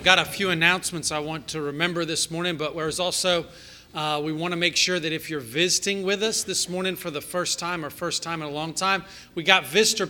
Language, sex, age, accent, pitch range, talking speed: English, male, 40-59, American, 150-180 Hz, 245 wpm